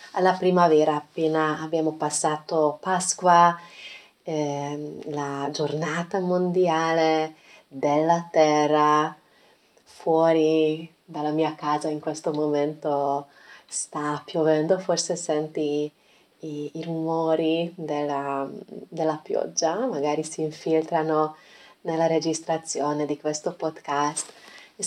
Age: 20-39